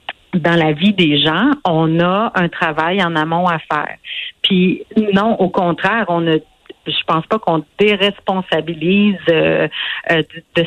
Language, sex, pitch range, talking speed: French, female, 165-210 Hz, 140 wpm